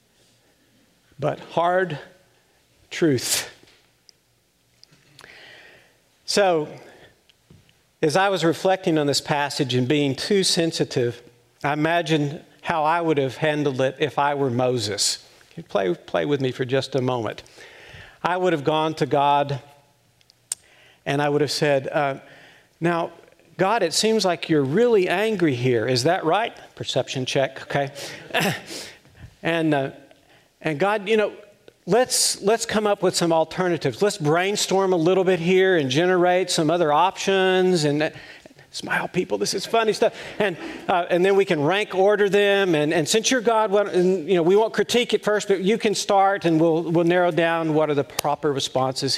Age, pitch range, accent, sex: 50-69, 140-185 Hz, American, male